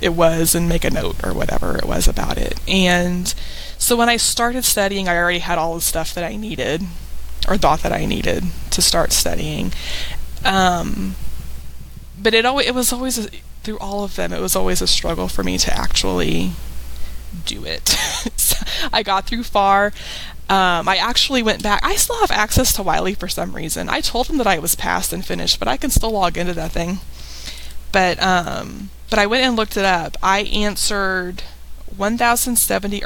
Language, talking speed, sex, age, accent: English, 190 wpm, female, 20-39, American